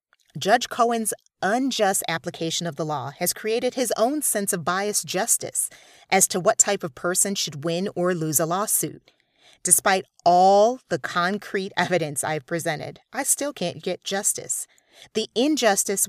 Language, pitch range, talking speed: English, 165-210 Hz, 155 wpm